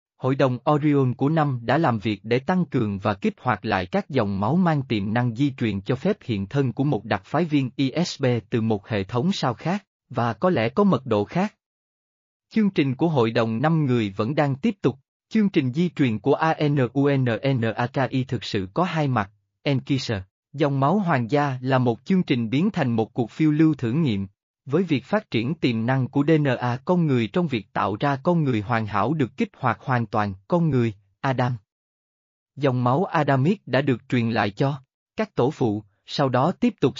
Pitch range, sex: 115-155 Hz, male